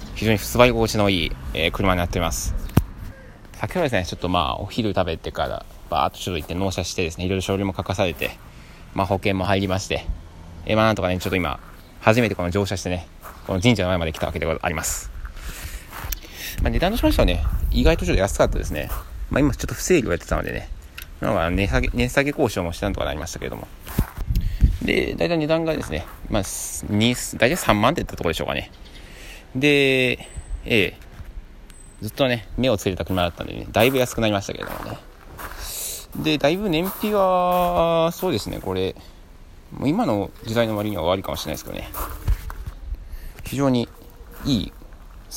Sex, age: male, 20-39